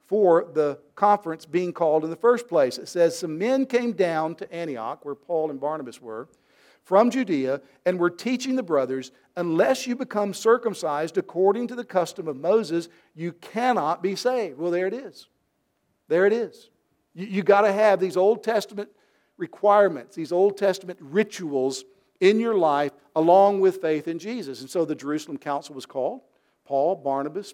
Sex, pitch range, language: male, 155-220 Hz, English